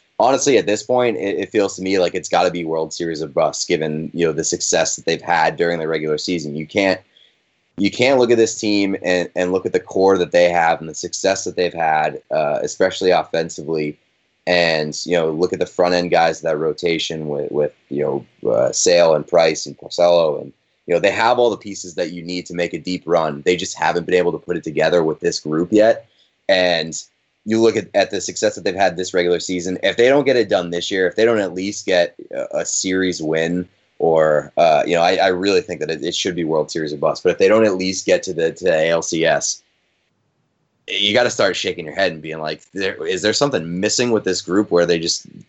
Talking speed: 245 wpm